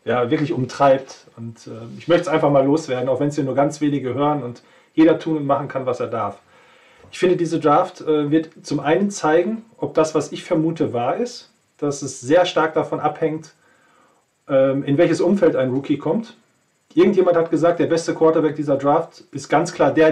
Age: 40-59